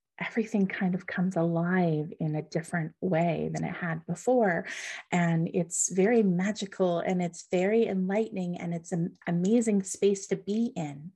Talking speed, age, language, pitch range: 155 wpm, 30-49, English, 175-215 Hz